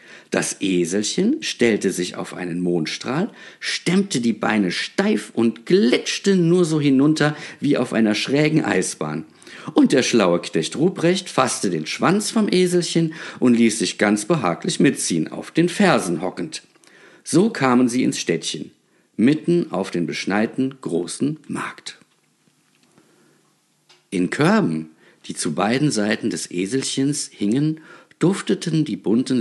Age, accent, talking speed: 50-69, German, 130 wpm